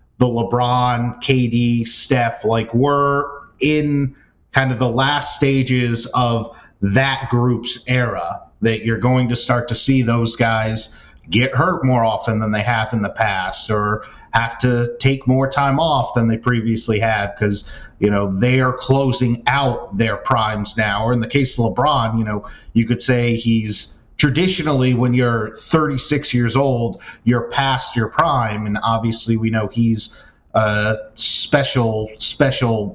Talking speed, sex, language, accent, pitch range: 155 wpm, male, English, American, 110-130 Hz